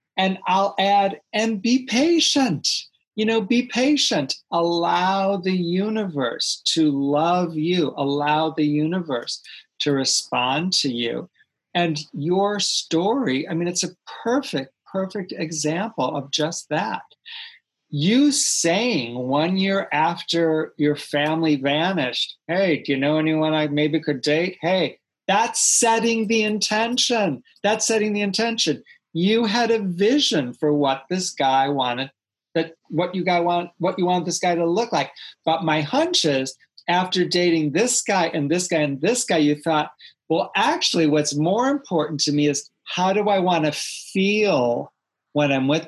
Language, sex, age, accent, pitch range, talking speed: English, male, 40-59, American, 150-195 Hz, 155 wpm